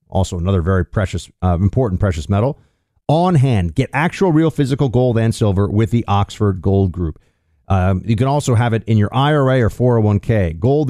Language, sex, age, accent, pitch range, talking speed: English, male, 40-59, American, 100-140 Hz, 185 wpm